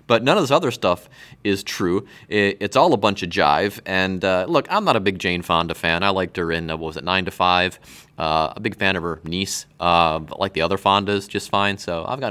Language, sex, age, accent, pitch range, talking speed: English, male, 30-49, American, 90-135 Hz, 265 wpm